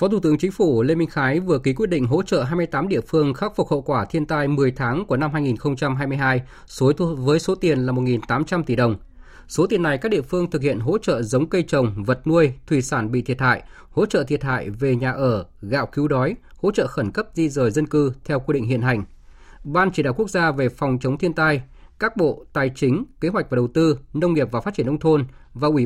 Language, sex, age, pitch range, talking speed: Vietnamese, male, 20-39, 125-165 Hz, 245 wpm